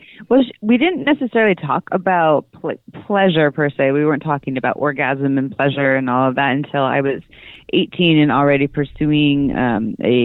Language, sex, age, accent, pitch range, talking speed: English, female, 30-49, American, 140-175 Hz, 175 wpm